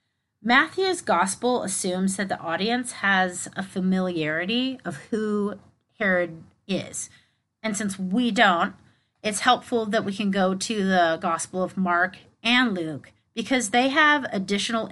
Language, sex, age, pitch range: English, female, 30-49, 170-230 Hz